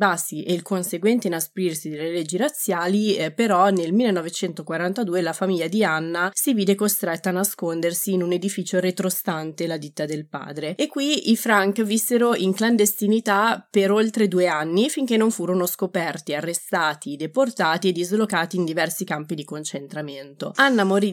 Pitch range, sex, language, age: 170-210 Hz, female, Italian, 20-39